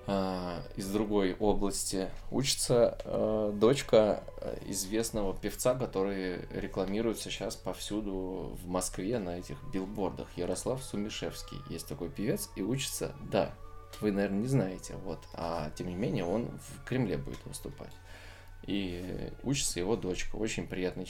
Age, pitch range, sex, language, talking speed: 20-39, 90-105 Hz, male, Russian, 130 wpm